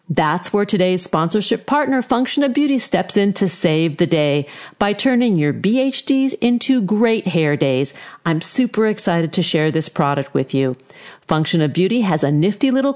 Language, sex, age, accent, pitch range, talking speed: English, female, 50-69, American, 155-240 Hz, 175 wpm